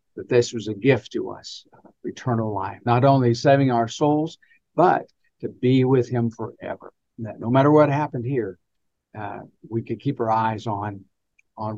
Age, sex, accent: 50-69, male, American